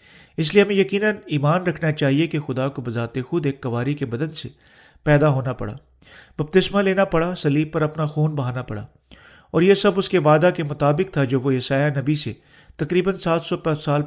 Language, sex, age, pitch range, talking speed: Urdu, male, 40-59, 135-175 Hz, 200 wpm